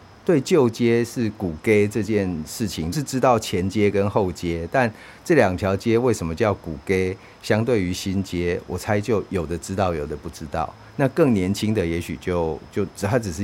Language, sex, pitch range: Chinese, male, 90-115 Hz